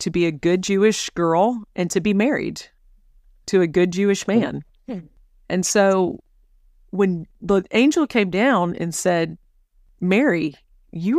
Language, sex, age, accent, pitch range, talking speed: English, female, 40-59, American, 155-200 Hz, 140 wpm